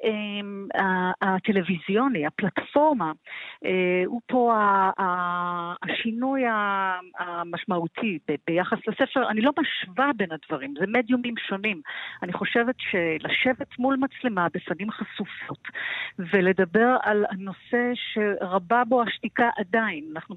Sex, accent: female, native